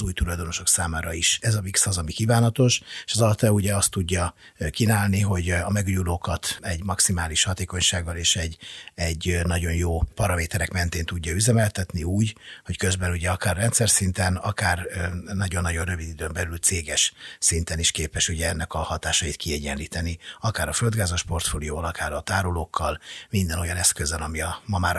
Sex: male